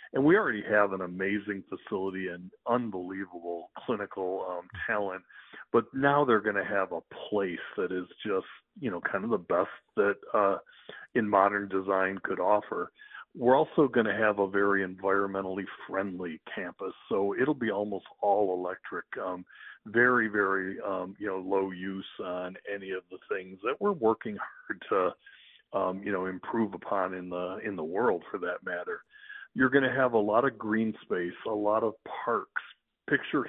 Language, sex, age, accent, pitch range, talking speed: English, male, 50-69, American, 95-115 Hz, 175 wpm